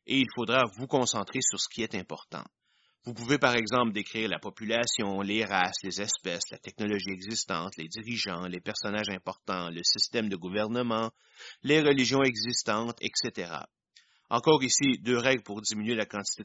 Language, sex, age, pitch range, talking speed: French, male, 30-49, 105-135 Hz, 165 wpm